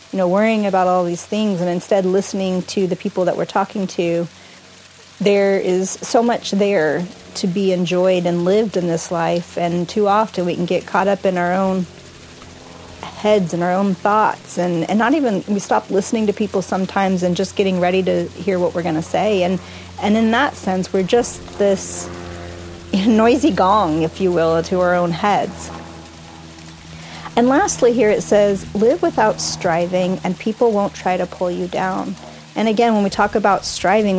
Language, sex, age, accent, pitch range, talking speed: English, female, 40-59, American, 175-205 Hz, 190 wpm